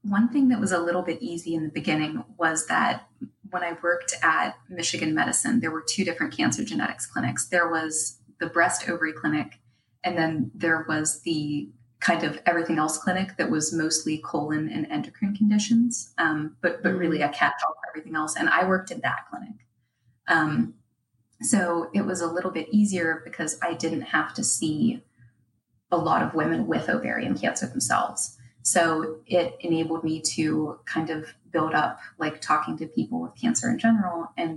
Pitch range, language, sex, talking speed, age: 155-185 Hz, English, female, 180 wpm, 20-39